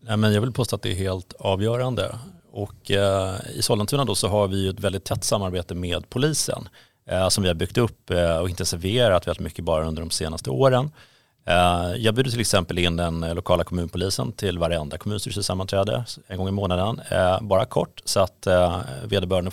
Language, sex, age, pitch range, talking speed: Swedish, male, 30-49, 90-115 Hz, 170 wpm